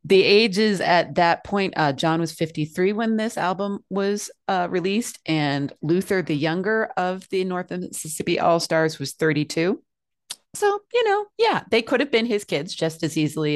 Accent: American